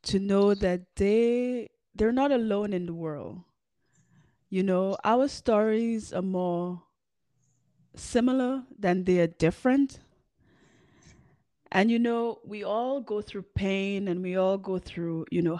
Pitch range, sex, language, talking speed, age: 165-205 Hz, female, English, 140 wpm, 20-39